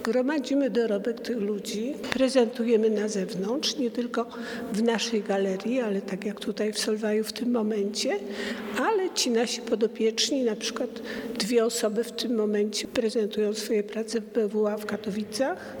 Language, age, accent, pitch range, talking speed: Polish, 50-69, native, 215-240 Hz, 150 wpm